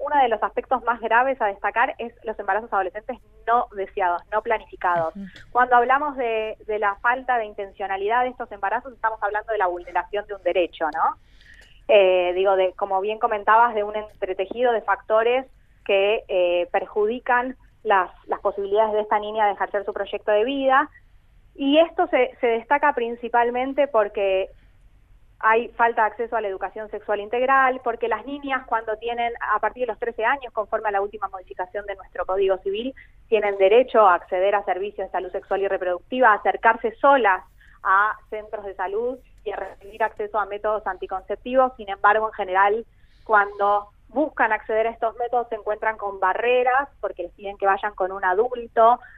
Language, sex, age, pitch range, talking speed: Spanish, female, 20-39, 195-235 Hz, 175 wpm